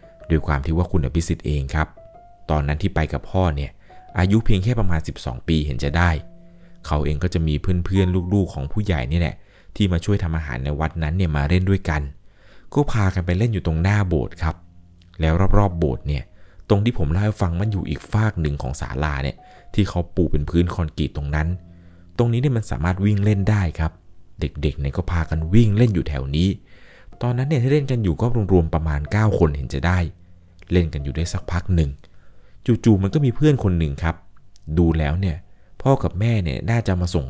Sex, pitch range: male, 80-100 Hz